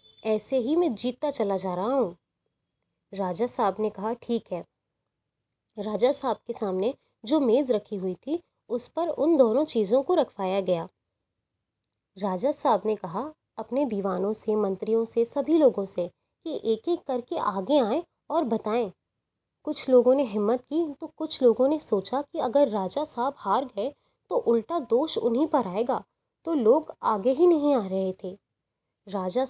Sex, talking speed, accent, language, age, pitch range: female, 165 wpm, native, Hindi, 20-39, 200-280 Hz